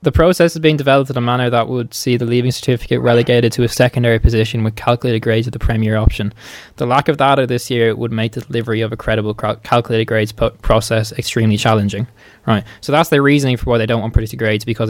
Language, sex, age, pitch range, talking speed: English, male, 20-39, 110-120 Hz, 240 wpm